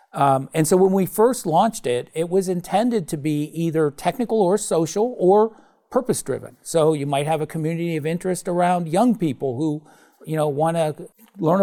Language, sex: English, male